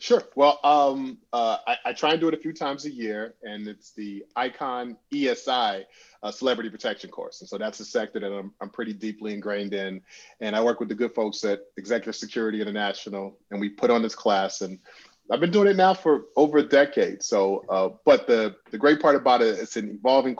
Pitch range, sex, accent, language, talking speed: 105-140 Hz, male, American, English, 220 wpm